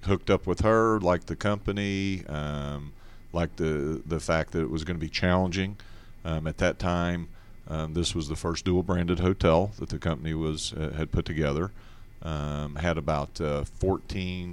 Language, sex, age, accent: English, male, 40-59, American